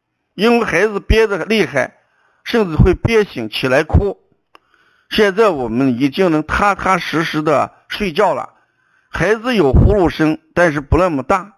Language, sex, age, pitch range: Chinese, male, 60-79, 145-235 Hz